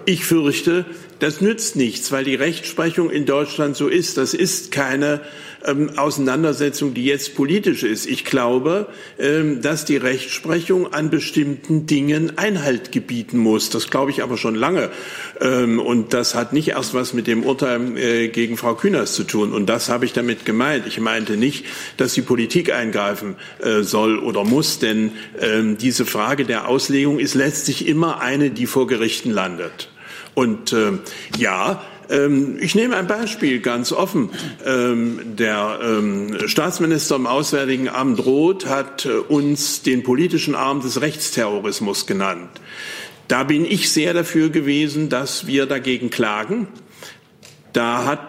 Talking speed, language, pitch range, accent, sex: 155 wpm, German, 120-150 Hz, German, male